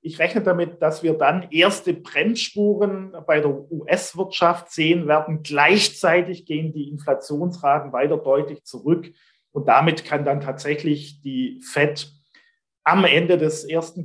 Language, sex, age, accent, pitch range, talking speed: German, male, 40-59, German, 145-175 Hz, 130 wpm